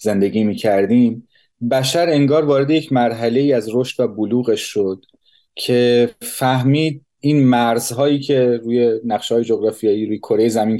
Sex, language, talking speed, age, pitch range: male, Persian, 140 wpm, 30-49, 115-135 Hz